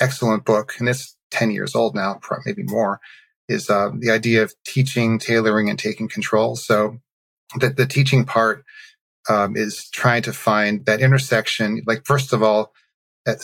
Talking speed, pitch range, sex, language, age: 165 wpm, 110-130 Hz, male, English, 40-59